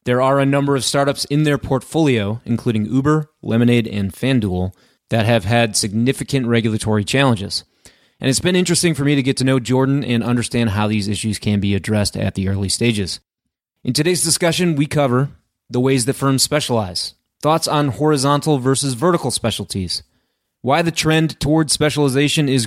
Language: English